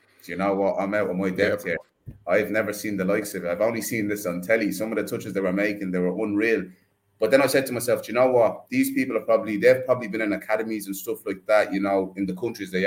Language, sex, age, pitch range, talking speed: English, male, 20-39, 95-115 Hz, 280 wpm